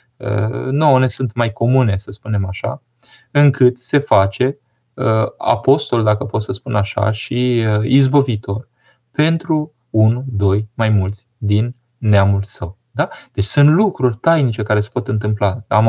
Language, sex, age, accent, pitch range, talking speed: Romanian, male, 20-39, native, 105-125 Hz, 140 wpm